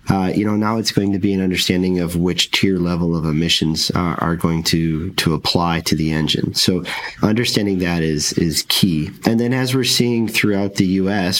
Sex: male